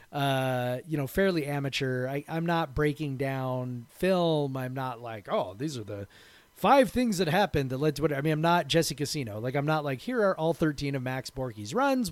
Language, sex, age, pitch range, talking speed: English, male, 30-49, 130-170 Hz, 220 wpm